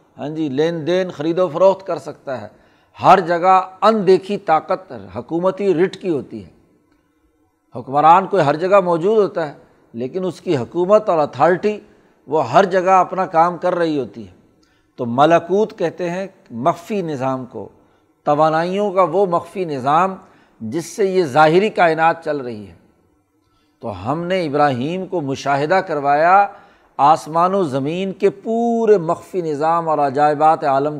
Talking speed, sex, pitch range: 150 wpm, male, 150-185 Hz